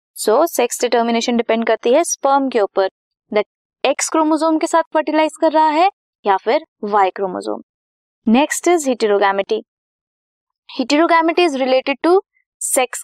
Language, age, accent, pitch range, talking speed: Hindi, 20-39, native, 220-300 Hz, 135 wpm